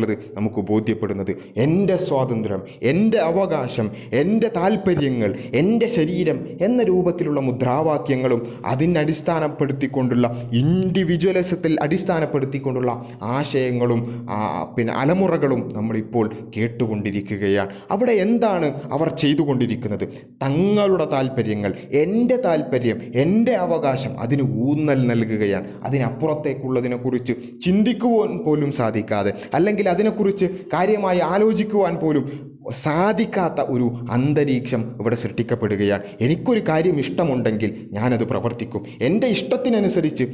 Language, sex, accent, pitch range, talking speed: Malayalam, male, native, 115-170 Hz, 80 wpm